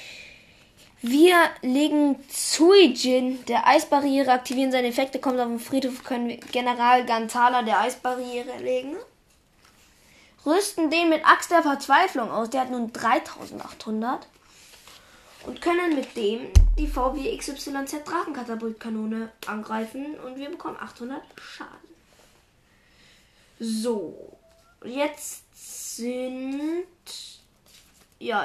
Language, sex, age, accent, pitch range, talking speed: German, female, 10-29, German, 240-300 Hz, 100 wpm